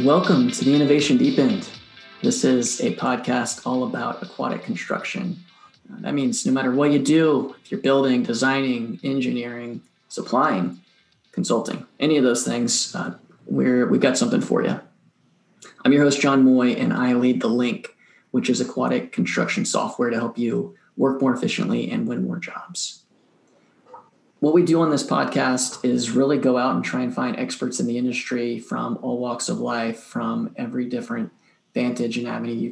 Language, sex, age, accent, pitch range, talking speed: English, male, 20-39, American, 120-175 Hz, 170 wpm